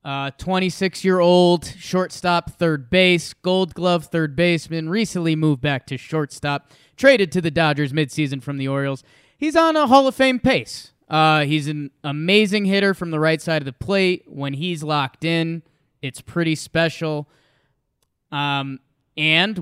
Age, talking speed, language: 20-39, 155 wpm, English